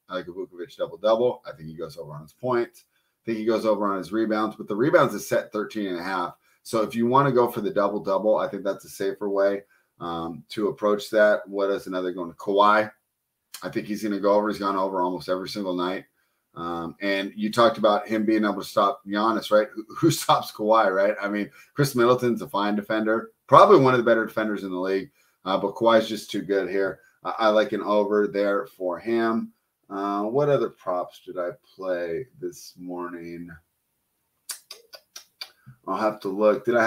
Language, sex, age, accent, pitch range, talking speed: English, male, 30-49, American, 95-115 Hz, 215 wpm